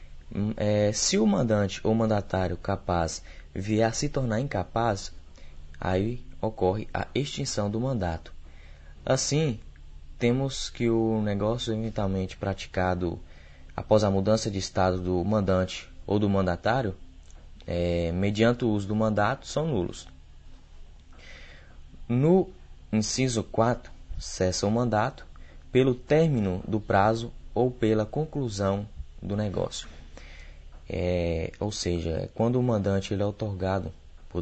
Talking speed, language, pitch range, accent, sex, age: 110 wpm, Portuguese, 75-110 Hz, Brazilian, male, 20-39